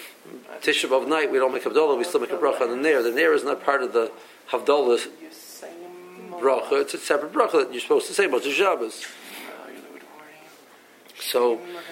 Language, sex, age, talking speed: English, male, 50-69, 185 wpm